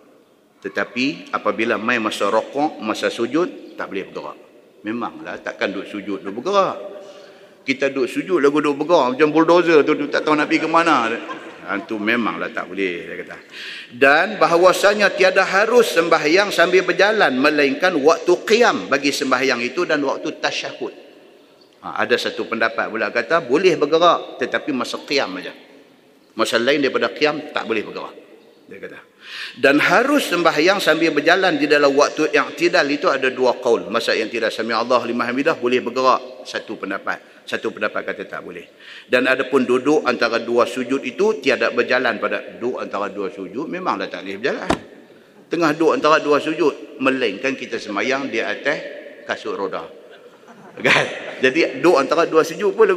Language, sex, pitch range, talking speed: Malay, male, 130-195 Hz, 160 wpm